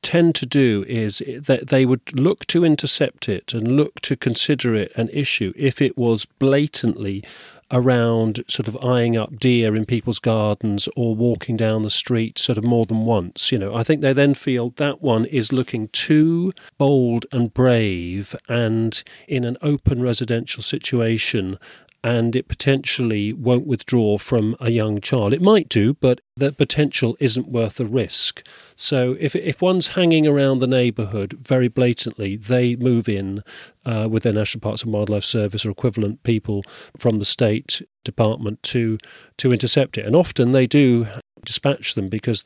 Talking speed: 170 wpm